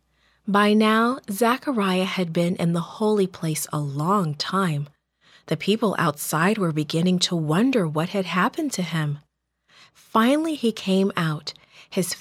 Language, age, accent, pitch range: English, 30-49, American, 165-230 Hz